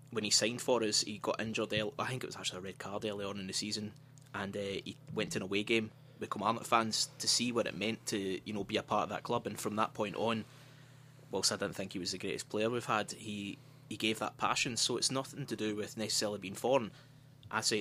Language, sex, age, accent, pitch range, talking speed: English, male, 20-39, British, 105-135 Hz, 265 wpm